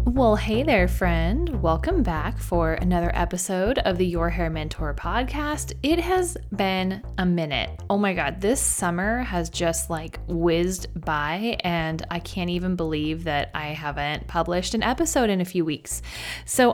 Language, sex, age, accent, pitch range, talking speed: English, female, 20-39, American, 165-220 Hz, 165 wpm